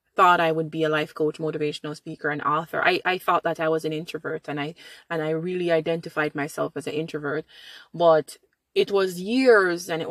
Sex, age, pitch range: female, 20-39, 155-185 Hz